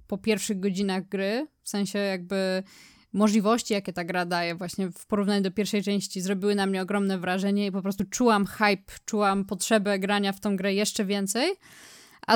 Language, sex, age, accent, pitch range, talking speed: Polish, female, 20-39, native, 200-225 Hz, 180 wpm